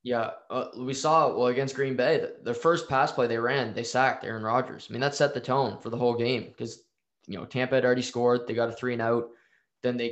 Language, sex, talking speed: English, male, 260 wpm